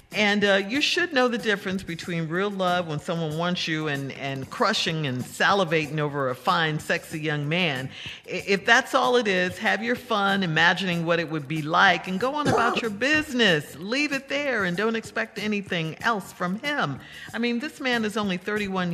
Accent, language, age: American, English, 50-69